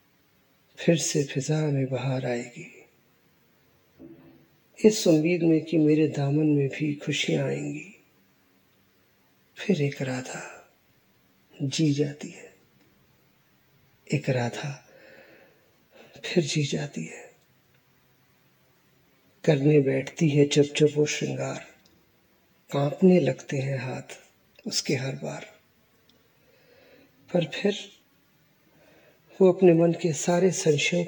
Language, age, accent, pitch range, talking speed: Hindi, 50-69, native, 135-165 Hz, 95 wpm